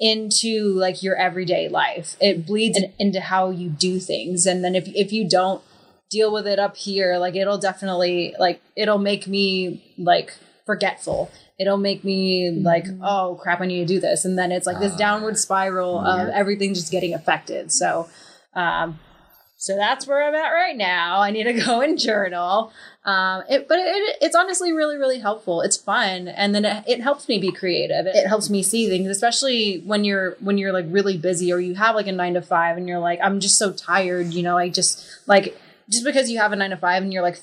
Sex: female